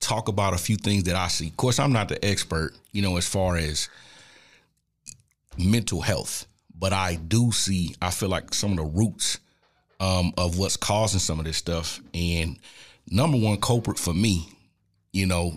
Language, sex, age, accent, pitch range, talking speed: English, male, 30-49, American, 85-105 Hz, 185 wpm